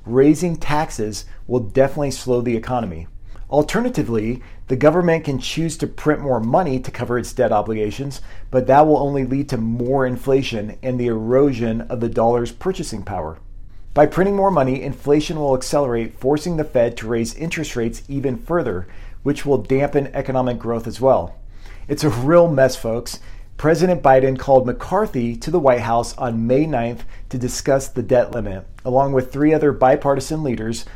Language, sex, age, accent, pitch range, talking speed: English, male, 40-59, American, 115-145 Hz, 170 wpm